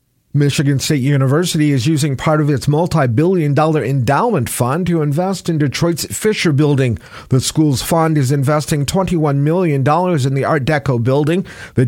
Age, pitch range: 50-69, 140-170 Hz